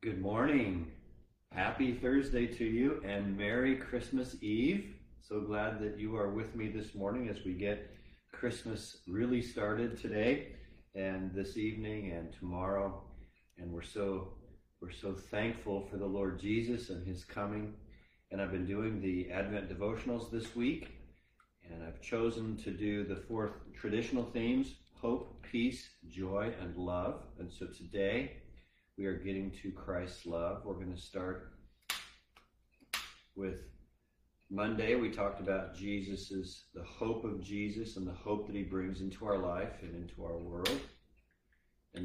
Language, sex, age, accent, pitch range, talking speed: English, male, 40-59, American, 90-105 Hz, 150 wpm